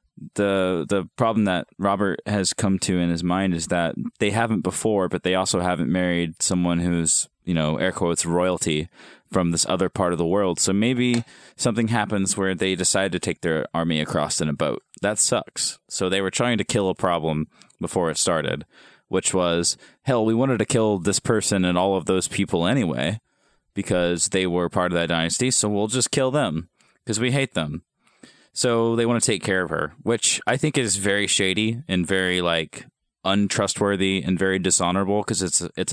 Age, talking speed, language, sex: 20-39, 195 wpm, English, male